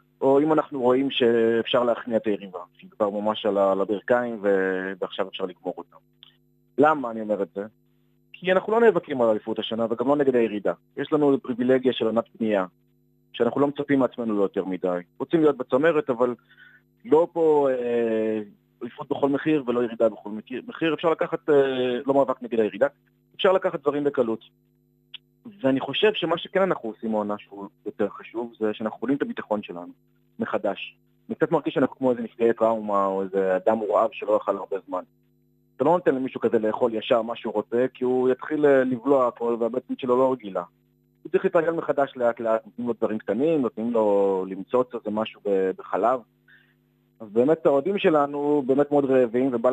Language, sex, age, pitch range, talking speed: Hebrew, male, 30-49, 105-140 Hz, 175 wpm